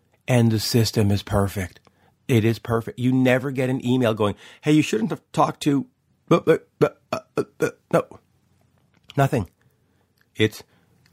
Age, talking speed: 40-59, 125 wpm